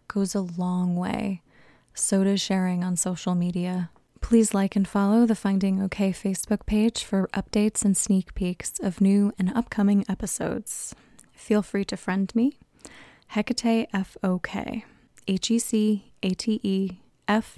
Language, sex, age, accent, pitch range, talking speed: English, female, 20-39, American, 185-215 Hz, 125 wpm